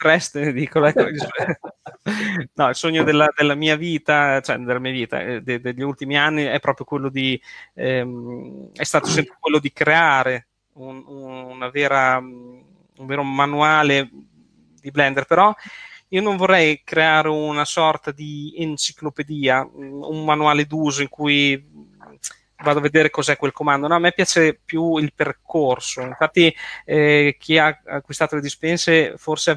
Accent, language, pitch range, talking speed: native, Italian, 140-155 Hz, 150 wpm